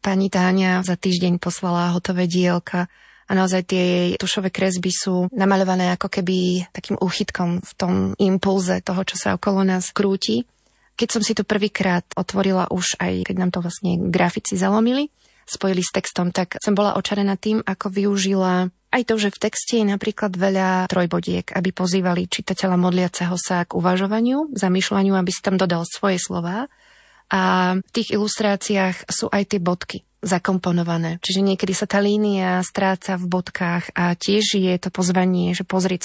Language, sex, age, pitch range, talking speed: Slovak, female, 20-39, 180-200 Hz, 165 wpm